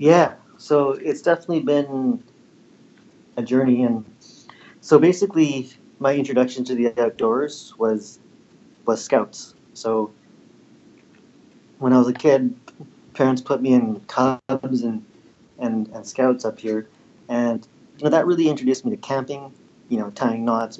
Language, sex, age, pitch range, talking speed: English, male, 30-49, 115-135 Hz, 140 wpm